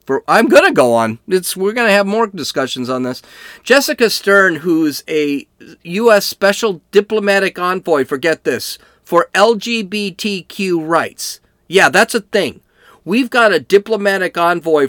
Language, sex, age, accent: English, male, 40-59, American